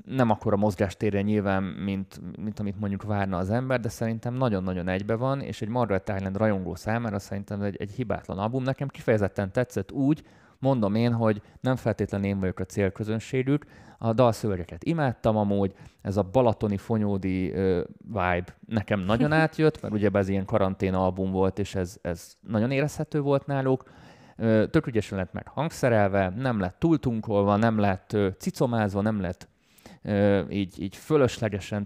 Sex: male